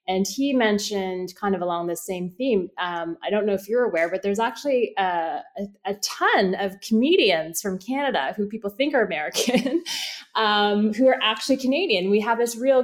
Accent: American